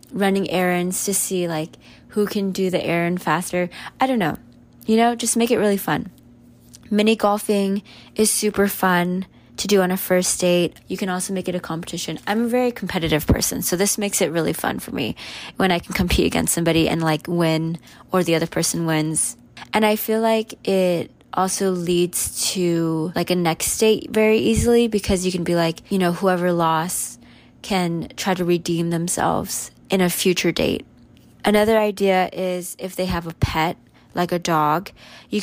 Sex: female